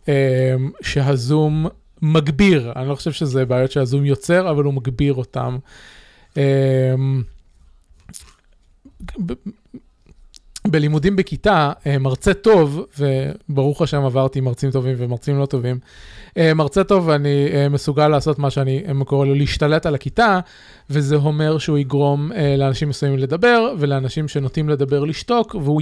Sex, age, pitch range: male, 20-39, 135-160 Hz